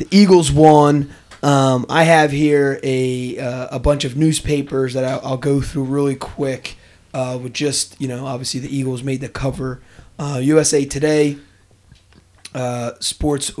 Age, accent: 30-49, American